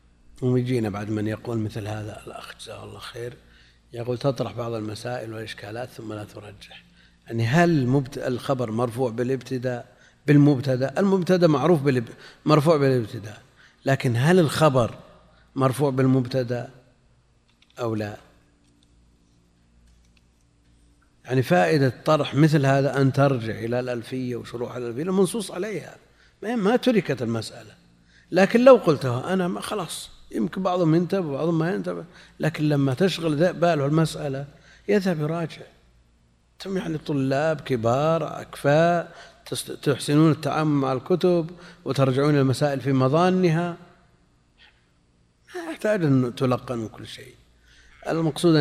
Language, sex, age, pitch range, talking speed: Arabic, male, 50-69, 110-155 Hz, 110 wpm